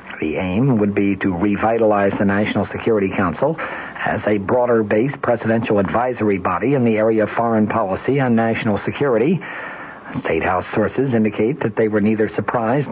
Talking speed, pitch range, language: 165 wpm, 105-125 Hz, English